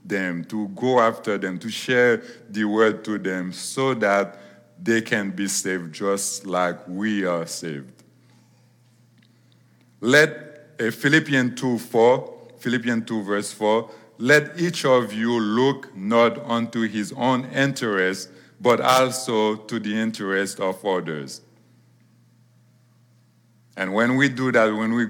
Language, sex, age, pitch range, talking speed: English, male, 50-69, 95-120 Hz, 130 wpm